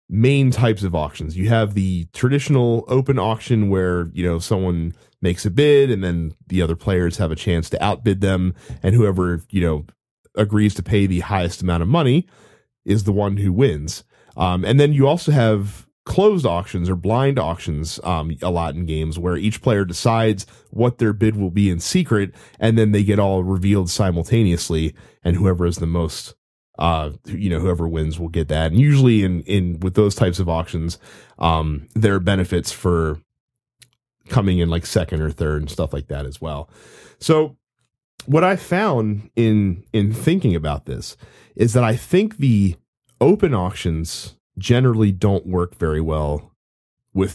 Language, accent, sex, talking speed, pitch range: English, American, male, 175 wpm, 85-115 Hz